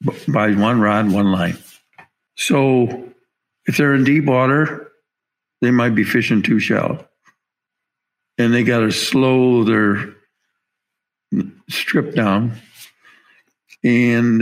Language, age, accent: English, 60-79, American